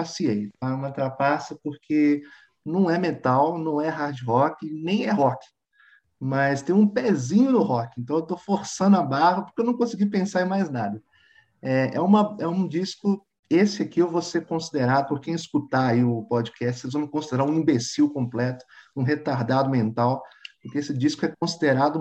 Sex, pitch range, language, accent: male, 130-175 Hz, Portuguese, Brazilian